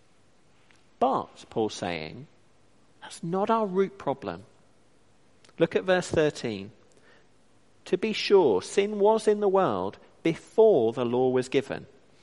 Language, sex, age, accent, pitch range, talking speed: English, male, 40-59, British, 135-220 Hz, 125 wpm